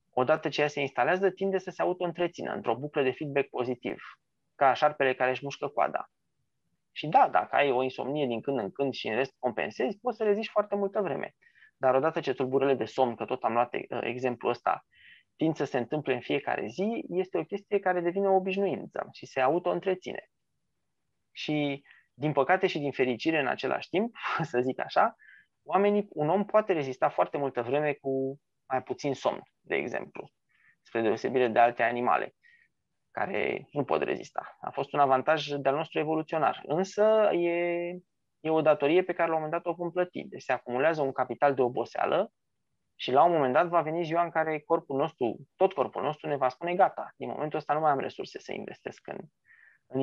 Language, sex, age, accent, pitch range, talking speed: Romanian, male, 20-39, native, 130-180 Hz, 190 wpm